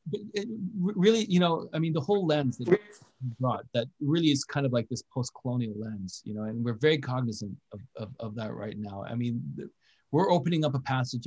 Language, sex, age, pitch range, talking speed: English, male, 30-49, 120-150 Hz, 210 wpm